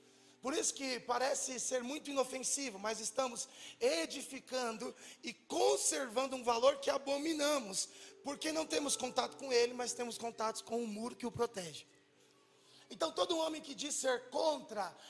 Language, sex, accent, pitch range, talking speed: Portuguese, male, Brazilian, 210-280 Hz, 150 wpm